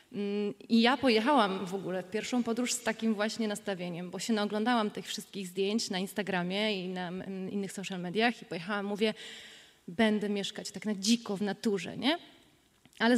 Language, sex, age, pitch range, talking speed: Polish, female, 20-39, 205-240 Hz, 170 wpm